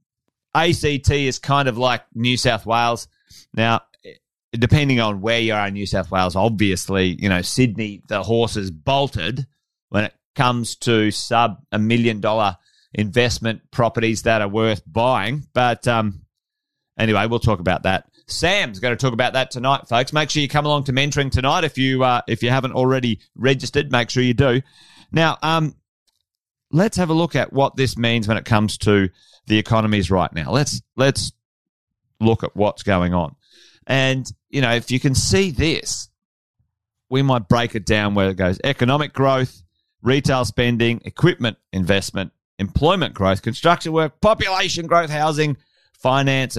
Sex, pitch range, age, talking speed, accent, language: male, 105-135 Hz, 30-49, 165 wpm, Australian, English